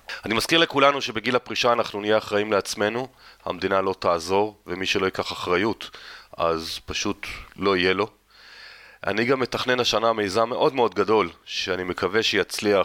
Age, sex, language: 30-49, male, Hebrew